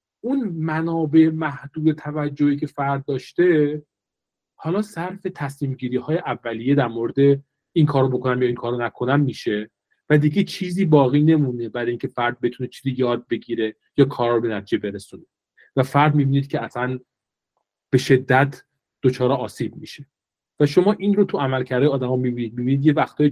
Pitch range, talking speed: 125-165 Hz, 160 wpm